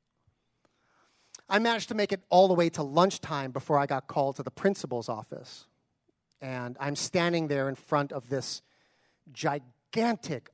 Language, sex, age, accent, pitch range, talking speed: English, male, 40-59, American, 140-230 Hz, 155 wpm